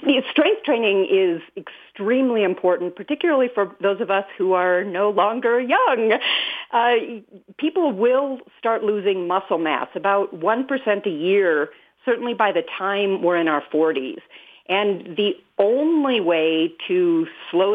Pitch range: 180-250 Hz